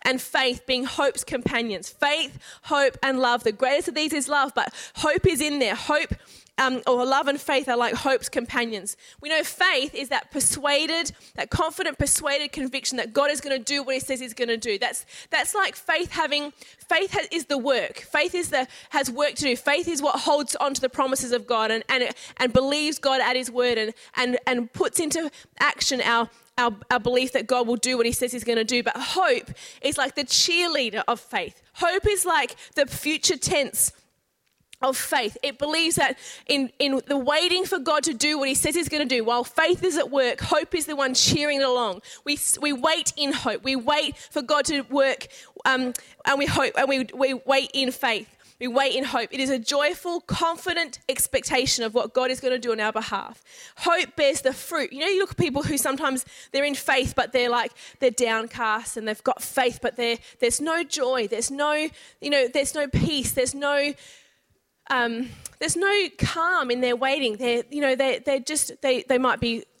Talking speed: 215 wpm